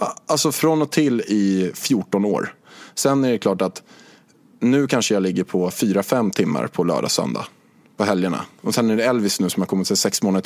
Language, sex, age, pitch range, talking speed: Swedish, male, 20-39, 100-135 Hz, 200 wpm